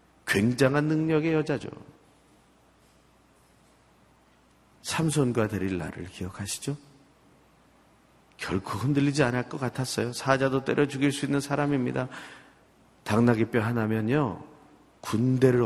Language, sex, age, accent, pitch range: Korean, male, 40-59, native, 90-125 Hz